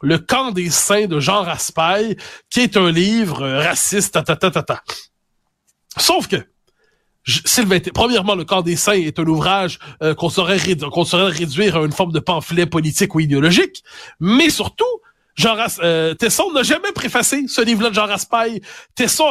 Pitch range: 175-245 Hz